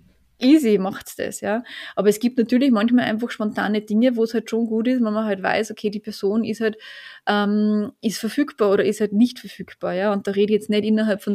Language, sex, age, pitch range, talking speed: German, female, 20-39, 200-225 Hz, 235 wpm